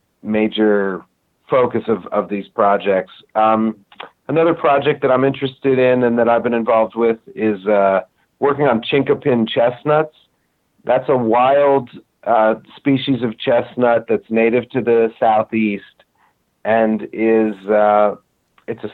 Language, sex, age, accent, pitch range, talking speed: English, male, 40-59, American, 105-130 Hz, 135 wpm